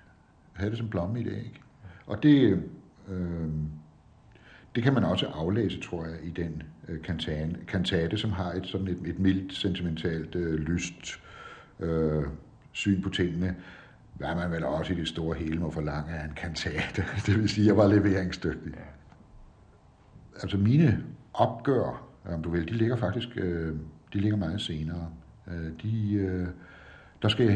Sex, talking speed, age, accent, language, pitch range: male, 165 wpm, 60-79, native, Danish, 80-95 Hz